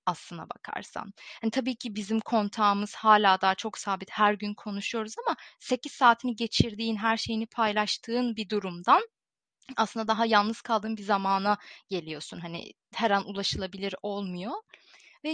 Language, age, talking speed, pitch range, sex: Turkish, 30-49, 140 wpm, 210-280 Hz, female